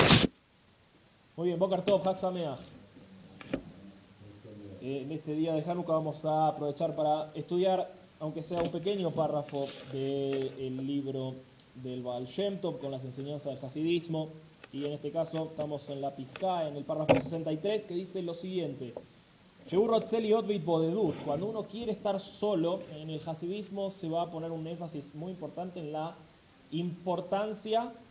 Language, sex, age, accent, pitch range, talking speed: English, male, 20-39, Argentinian, 145-195 Hz, 145 wpm